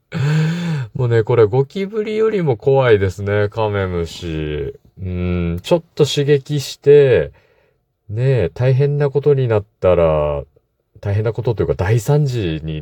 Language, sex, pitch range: Japanese, male, 90-140 Hz